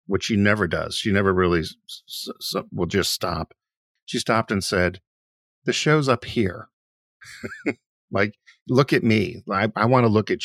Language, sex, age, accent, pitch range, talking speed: English, male, 50-69, American, 90-115 Hz, 155 wpm